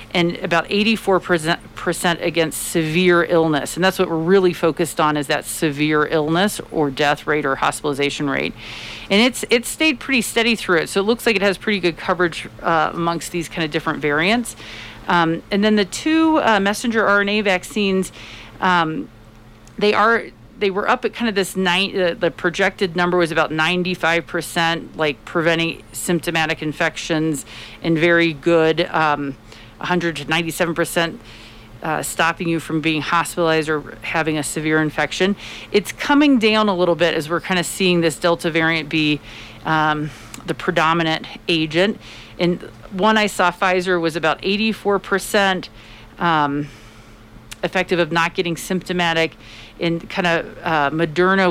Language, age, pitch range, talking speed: English, 40-59, 155-190 Hz, 150 wpm